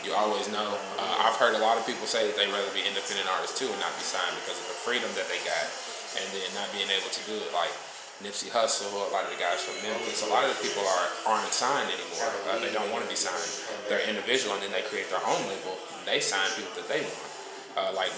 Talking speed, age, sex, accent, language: 270 wpm, 20-39, male, American, English